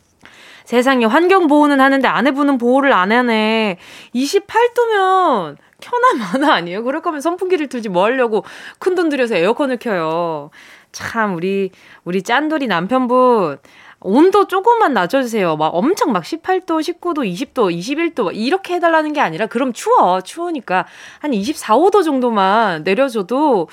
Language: Korean